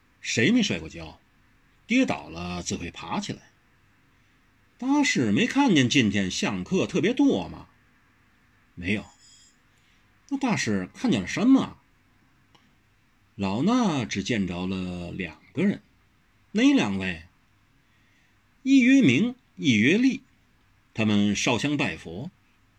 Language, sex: Chinese, male